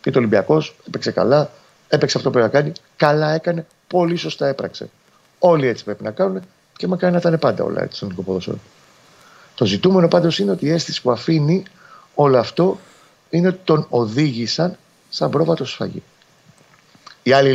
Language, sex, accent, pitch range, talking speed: Greek, male, native, 110-155 Hz, 160 wpm